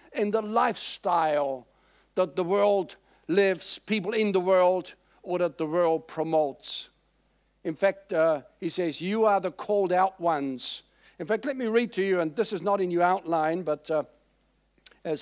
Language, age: English, 60-79